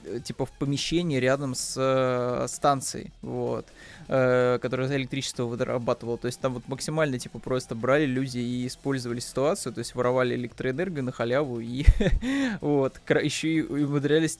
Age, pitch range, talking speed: 20-39, 125-155 Hz, 145 wpm